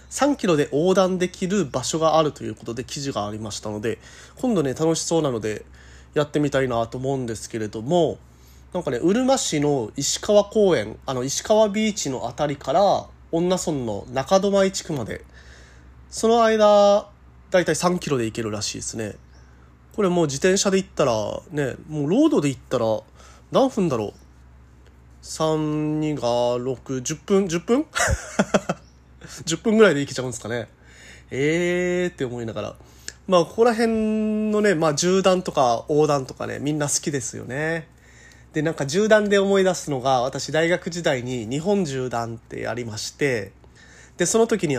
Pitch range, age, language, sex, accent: 110-180 Hz, 20-39, Japanese, male, native